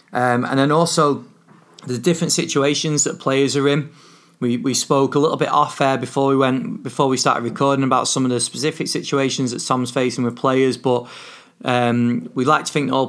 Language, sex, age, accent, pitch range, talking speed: English, male, 30-49, British, 125-140 Hz, 205 wpm